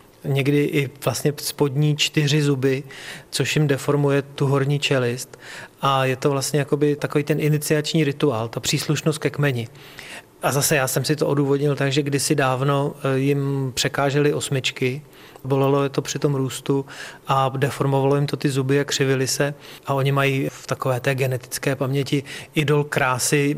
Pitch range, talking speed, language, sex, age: 135-150 Hz, 160 wpm, Czech, male, 30-49